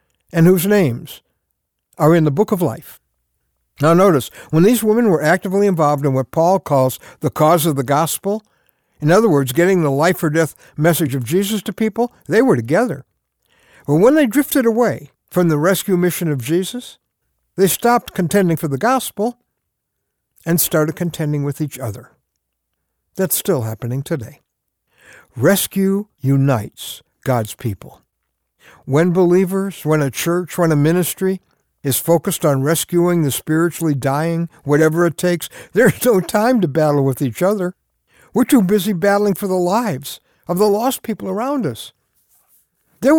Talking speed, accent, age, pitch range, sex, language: 155 wpm, American, 60-79, 145-200 Hz, male, English